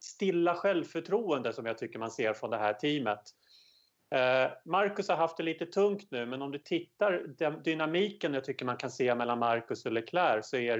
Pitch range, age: 125-165 Hz, 30-49